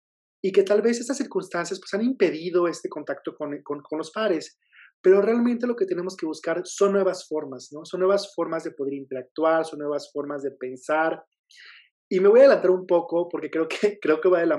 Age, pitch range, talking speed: 30-49, 140-185 Hz, 220 wpm